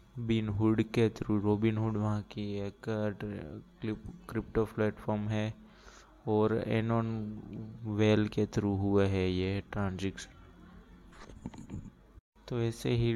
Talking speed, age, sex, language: 105 wpm, 20-39, male, Hindi